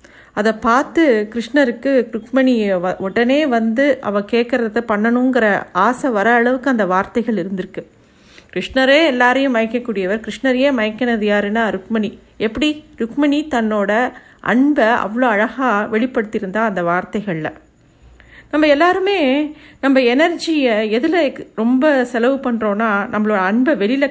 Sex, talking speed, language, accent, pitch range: female, 105 wpm, Tamil, native, 210-270 Hz